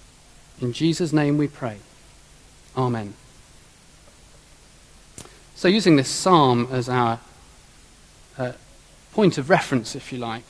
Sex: male